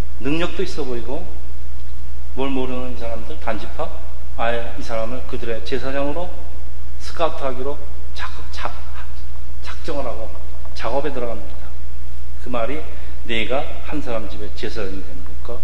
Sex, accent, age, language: male, native, 40-59, Korean